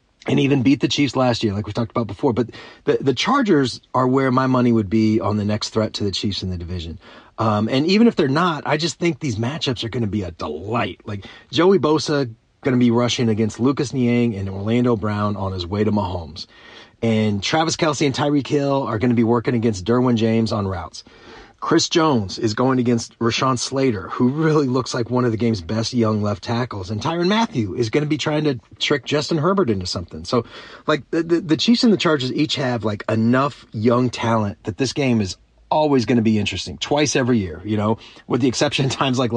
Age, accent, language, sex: 30-49, American, English, male